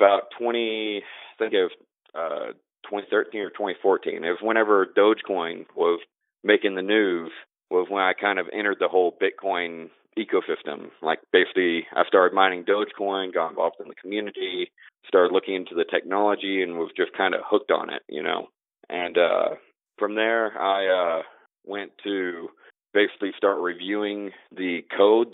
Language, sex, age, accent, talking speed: English, male, 40-59, American, 160 wpm